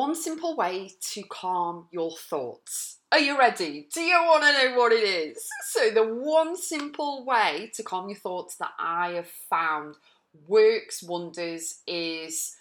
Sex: female